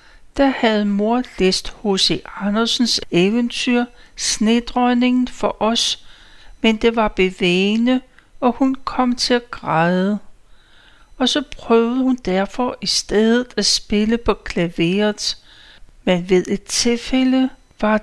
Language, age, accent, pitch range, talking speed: Danish, 60-79, native, 195-255 Hz, 120 wpm